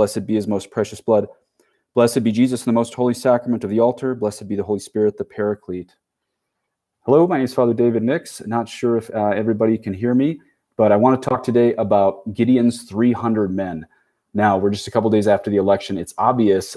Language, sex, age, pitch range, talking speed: English, male, 30-49, 100-125 Hz, 215 wpm